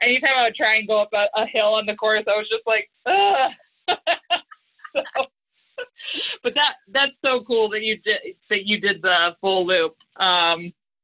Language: English